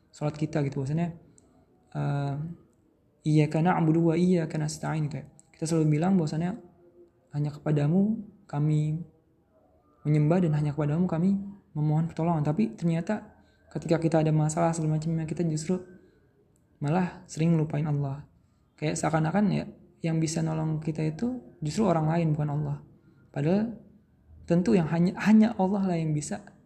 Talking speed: 135 wpm